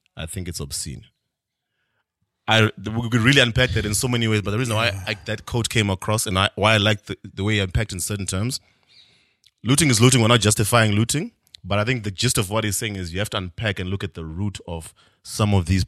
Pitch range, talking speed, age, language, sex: 90-110 Hz, 255 wpm, 30-49, English, male